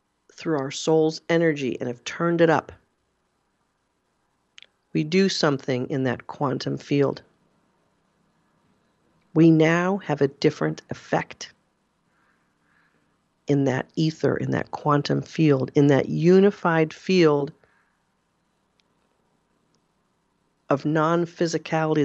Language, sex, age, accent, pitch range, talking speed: English, female, 40-59, American, 140-170 Hz, 95 wpm